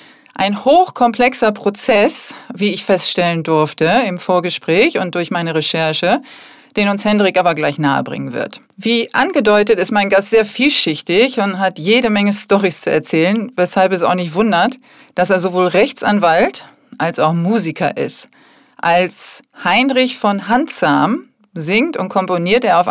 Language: German